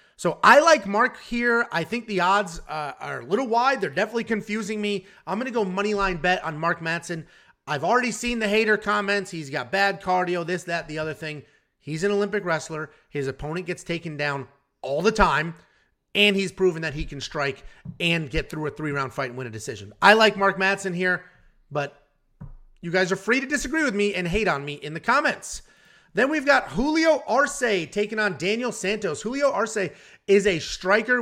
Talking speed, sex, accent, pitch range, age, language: 205 wpm, male, American, 155-215 Hz, 30-49, English